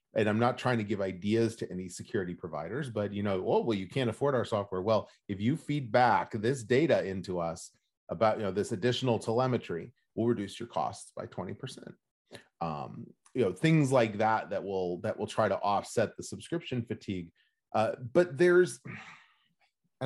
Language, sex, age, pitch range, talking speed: English, male, 30-49, 95-120 Hz, 190 wpm